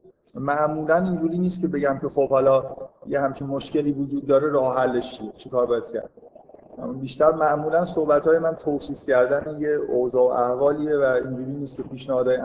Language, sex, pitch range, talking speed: Persian, male, 135-160 Hz, 165 wpm